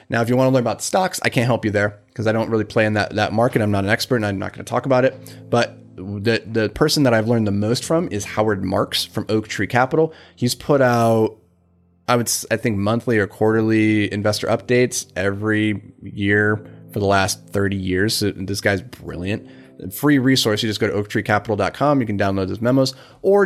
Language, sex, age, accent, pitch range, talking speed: English, male, 30-49, American, 100-125 Hz, 225 wpm